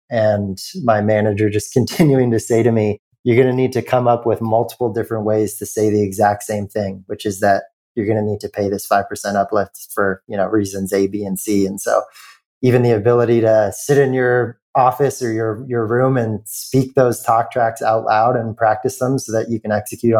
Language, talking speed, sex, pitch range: English, 225 wpm, male, 105-120 Hz